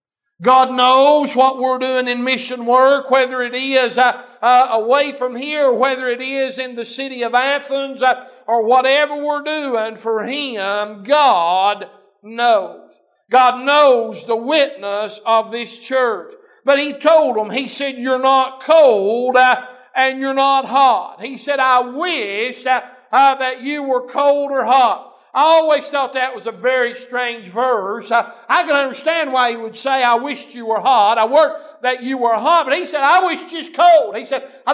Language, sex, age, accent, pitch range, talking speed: English, male, 60-79, American, 245-295 Hz, 170 wpm